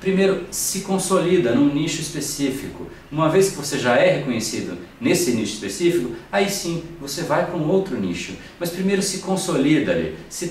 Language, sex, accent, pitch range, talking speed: Portuguese, male, Brazilian, 120-175 Hz, 170 wpm